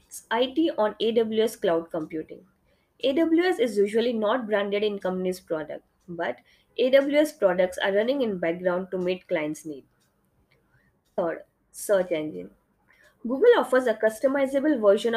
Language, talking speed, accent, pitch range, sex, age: English, 125 wpm, Indian, 185-240 Hz, female, 20-39